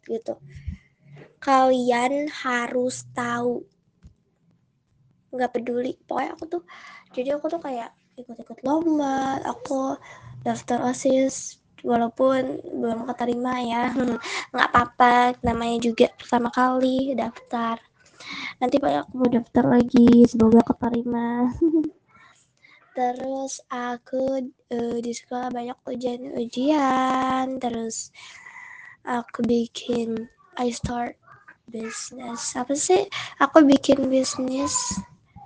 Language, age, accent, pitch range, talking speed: Indonesian, 20-39, native, 240-275 Hz, 95 wpm